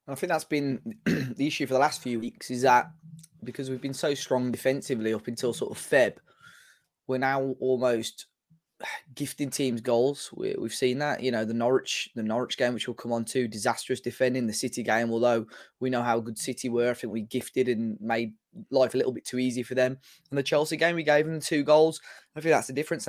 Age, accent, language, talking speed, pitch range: 20-39, British, English, 225 wpm, 120-140 Hz